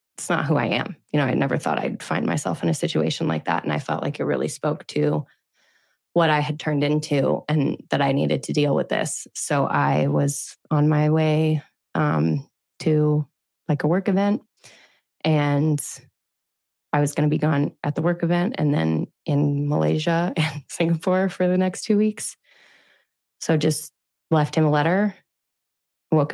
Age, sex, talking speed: 20-39, female, 180 wpm